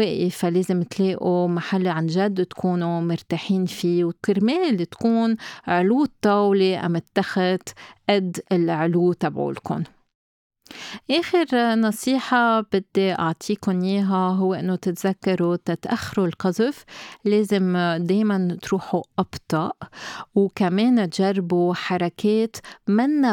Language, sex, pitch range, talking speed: Arabic, female, 175-215 Hz, 90 wpm